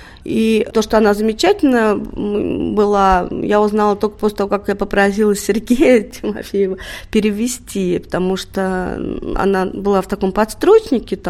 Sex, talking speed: female, 130 wpm